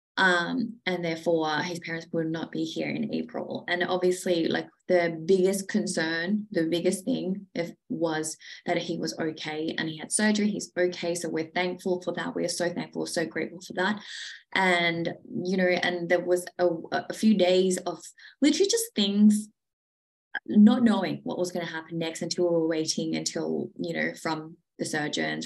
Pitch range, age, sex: 170-215 Hz, 20-39, female